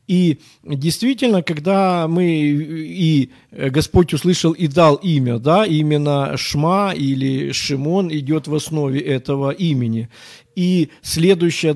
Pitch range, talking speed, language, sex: 135-170 Hz, 110 wpm, Ukrainian, male